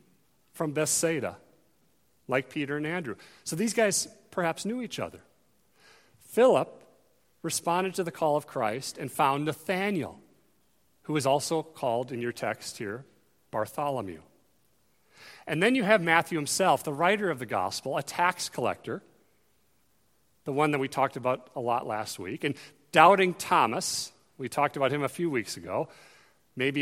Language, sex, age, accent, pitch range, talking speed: English, male, 40-59, American, 135-190 Hz, 150 wpm